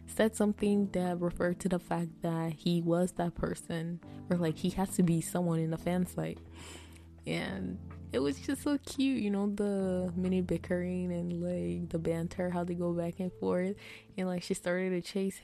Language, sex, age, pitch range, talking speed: English, female, 20-39, 170-195 Hz, 190 wpm